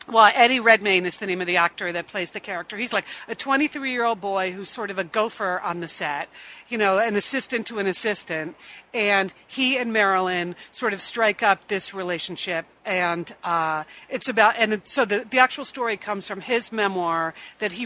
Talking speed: 205 wpm